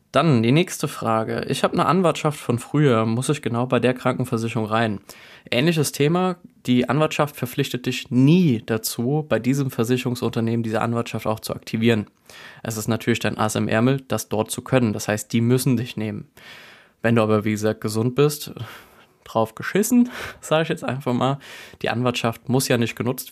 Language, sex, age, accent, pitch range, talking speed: German, male, 20-39, German, 110-135 Hz, 180 wpm